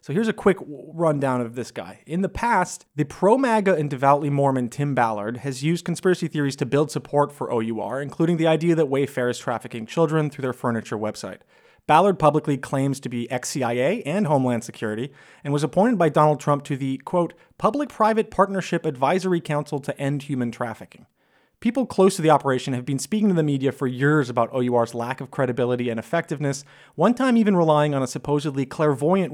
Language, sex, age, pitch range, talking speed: English, male, 30-49, 130-180 Hz, 190 wpm